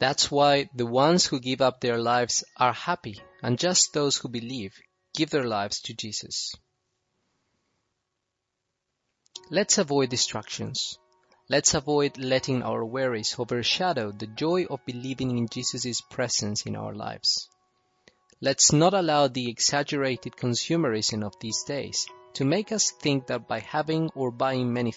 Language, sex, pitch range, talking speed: English, male, 115-145 Hz, 140 wpm